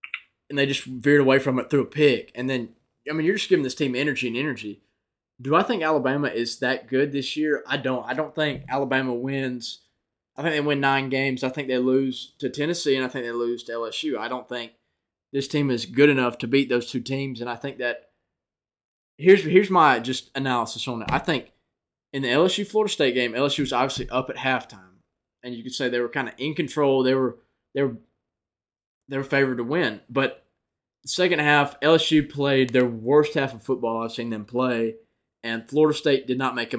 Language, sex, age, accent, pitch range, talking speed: English, male, 20-39, American, 120-145 Hz, 220 wpm